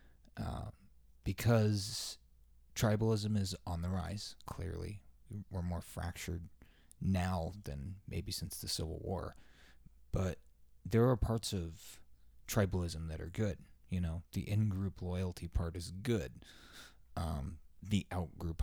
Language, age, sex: English, 20-39, male